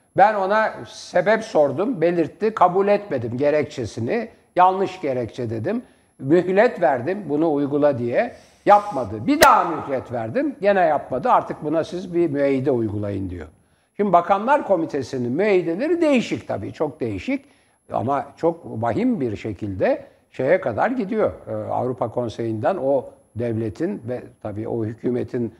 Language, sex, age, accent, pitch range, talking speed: Turkish, male, 60-79, native, 120-180 Hz, 125 wpm